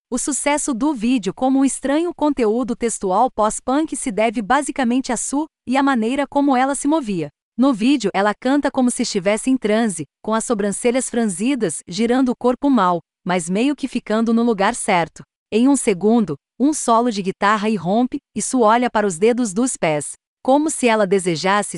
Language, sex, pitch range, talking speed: Portuguese, female, 200-255 Hz, 180 wpm